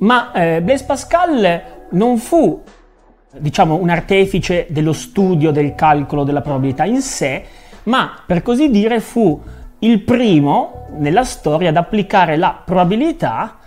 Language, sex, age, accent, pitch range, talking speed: Italian, male, 30-49, native, 135-225 Hz, 130 wpm